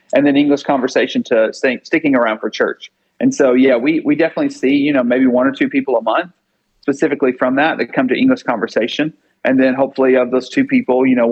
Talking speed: 225 wpm